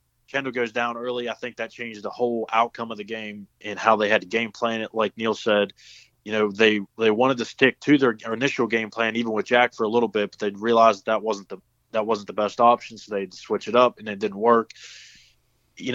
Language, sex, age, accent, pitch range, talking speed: English, male, 20-39, American, 110-130 Hz, 250 wpm